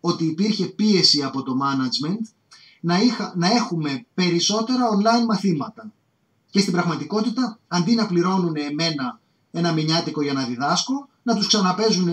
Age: 30-49